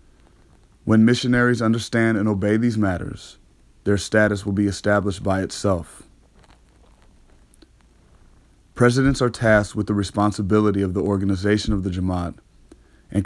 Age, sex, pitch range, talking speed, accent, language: 30-49, male, 95-110 Hz, 120 wpm, American, English